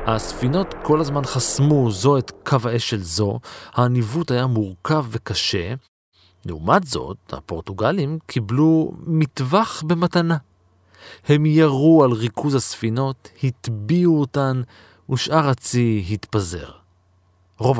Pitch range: 95-140 Hz